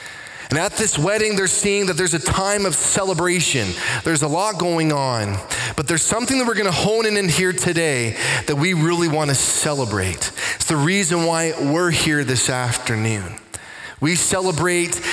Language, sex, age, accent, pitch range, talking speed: English, male, 20-39, American, 135-200 Hz, 180 wpm